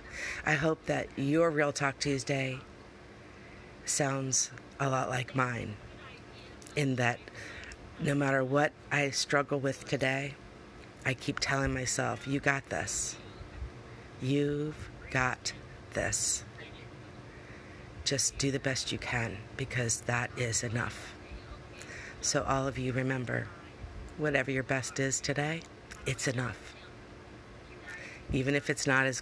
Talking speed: 120 wpm